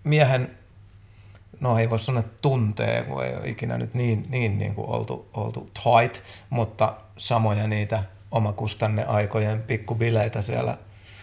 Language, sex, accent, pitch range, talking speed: Finnish, male, native, 100-120 Hz, 140 wpm